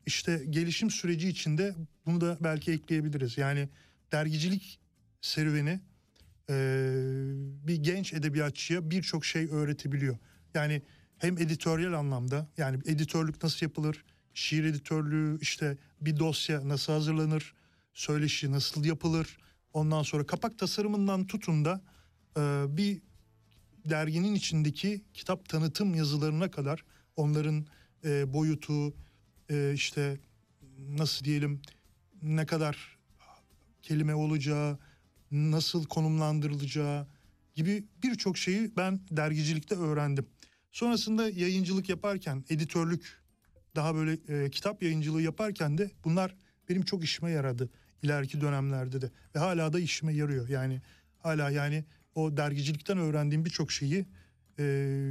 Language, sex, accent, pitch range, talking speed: Turkish, male, native, 145-170 Hz, 110 wpm